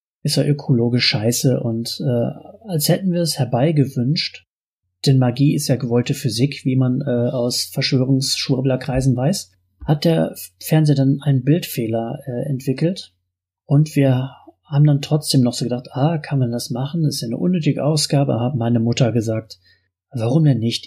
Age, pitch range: 30-49, 120-145 Hz